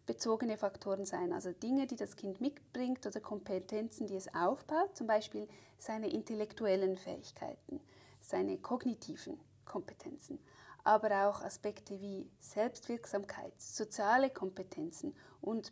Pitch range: 195-275 Hz